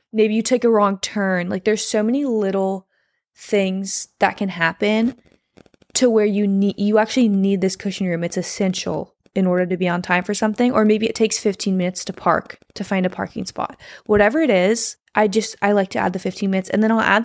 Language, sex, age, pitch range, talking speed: English, female, 20-39, 190-225 Hz, 225 wpm